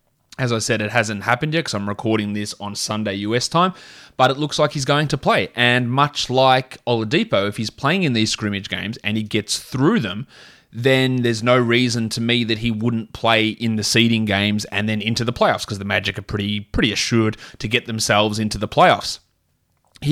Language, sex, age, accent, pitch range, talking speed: English, male, 20-39, Australian, 110-130 Hz, 215 wpm